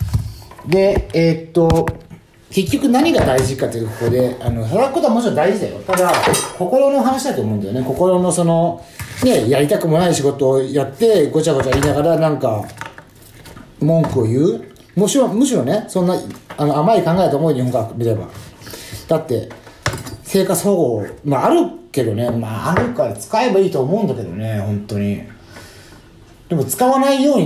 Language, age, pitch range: Japanese, 40-59, 115-165 Hz